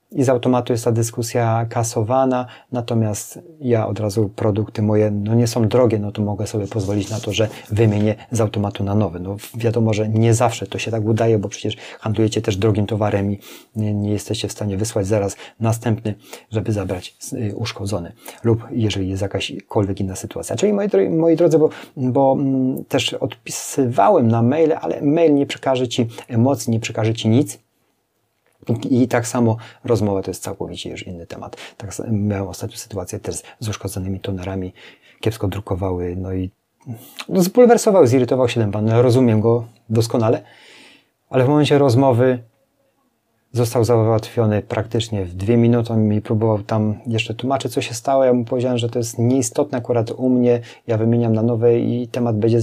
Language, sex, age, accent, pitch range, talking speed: Polish, male, 30-49, native, 105-125 Hz, 170 wpm